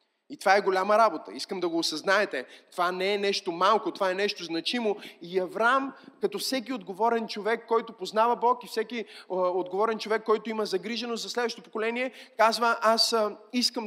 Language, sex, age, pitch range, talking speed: Bulgarian, male, 20-39, 195-235 Hz, 180 wpm